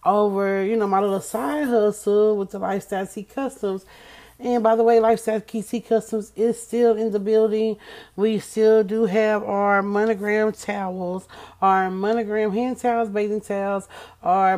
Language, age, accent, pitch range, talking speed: English, 30-49, American, 185-220 Hz, 160 wpm